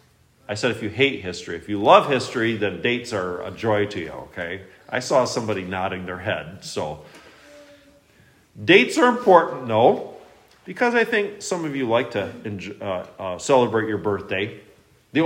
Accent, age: American, 40-59